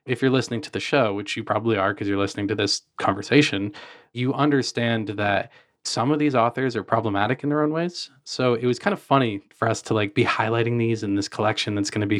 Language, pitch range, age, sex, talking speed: English, 105-135 Hz, 20-39, male, 240 wpm